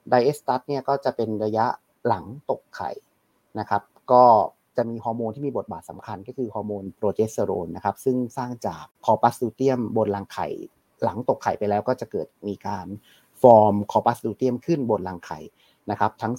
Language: Thai